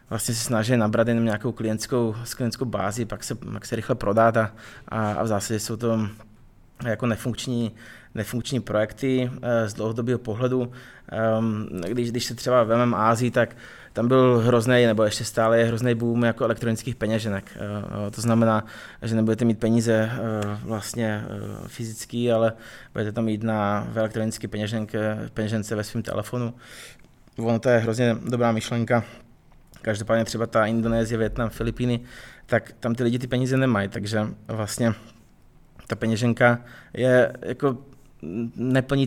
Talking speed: 140 wpm